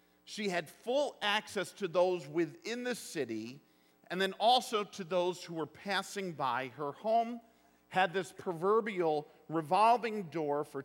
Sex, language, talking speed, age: male, English, 145 wpm, 50-69